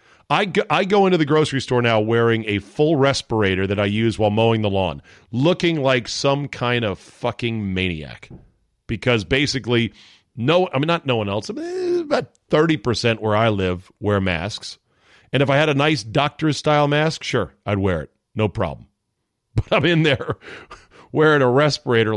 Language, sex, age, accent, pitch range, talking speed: English, male, 40-59, American, 110-155 Hz, 170 wpm